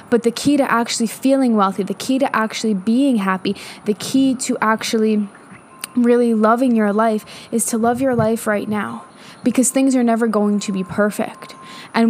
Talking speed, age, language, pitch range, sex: 185 wpm, 10-29, English, 210-255 Hz, female